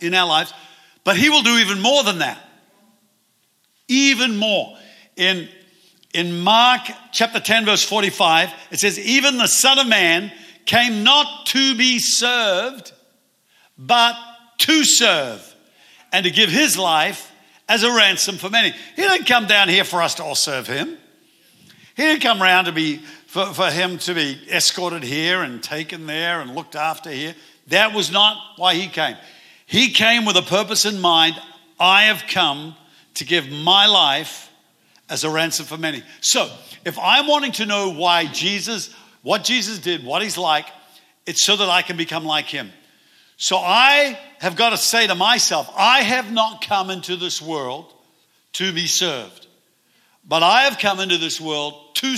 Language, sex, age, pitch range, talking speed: English, male, 60-79, 170-235 Hz, 170 wpm